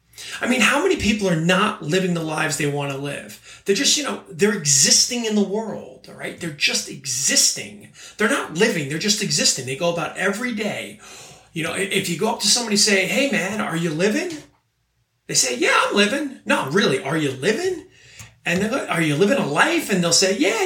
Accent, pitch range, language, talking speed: American, 170-230 Hz, English, 220 wpm